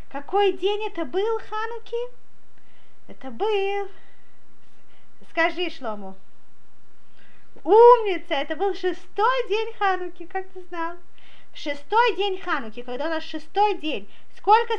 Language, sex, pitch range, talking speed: Russian, female, 270-420 Hz, 110 wpm